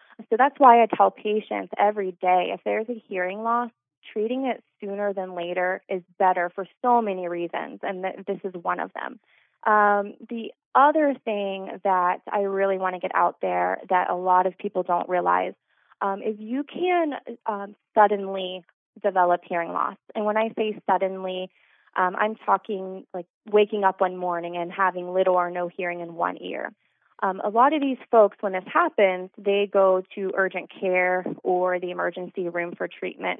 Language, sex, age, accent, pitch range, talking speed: English, female, 20-39, American, 185-215 Hz, 180 wpm